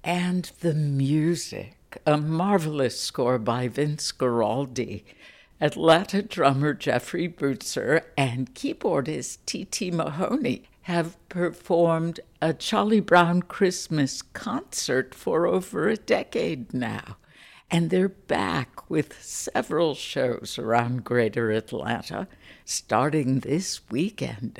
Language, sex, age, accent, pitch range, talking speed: English, female, 60-79, American, 125-175 Hz, 100 wpm